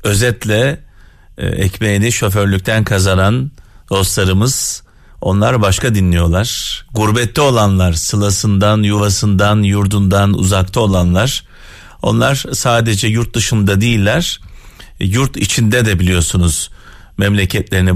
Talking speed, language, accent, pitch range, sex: 85 wpm, Turkish, native, 95-125 Hz, male